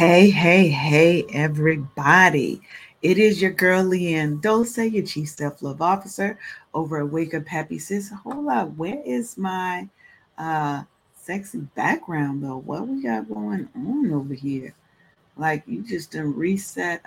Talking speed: 145 wpm